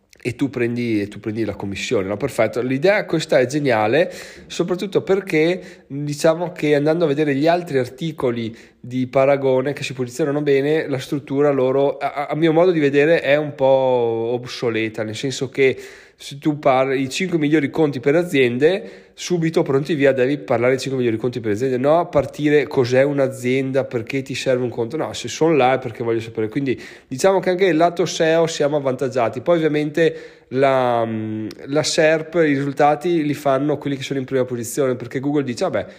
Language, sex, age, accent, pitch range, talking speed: Italian, male, 20-39, native, 125-155 Hz, 180 wpm